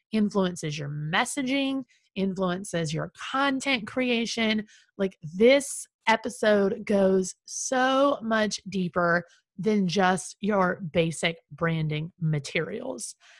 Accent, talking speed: American, 90 wpm